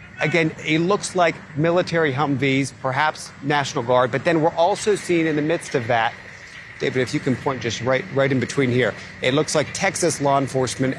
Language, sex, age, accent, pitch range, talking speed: English, male, 40-59, American, 130-155 Hz, 195 wpm